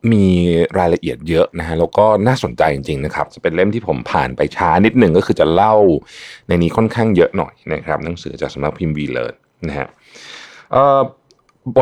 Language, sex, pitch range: Thai, male, 80-120 Hz